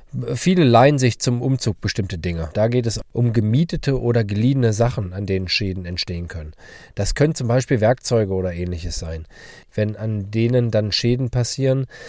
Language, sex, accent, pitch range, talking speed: German, male, German, 95-125 Hz, 170 wpm